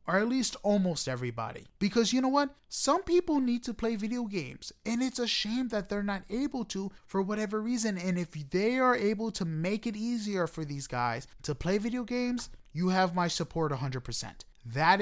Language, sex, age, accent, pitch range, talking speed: English, male, 30-49, American, 155-225 Hz, 205 wpm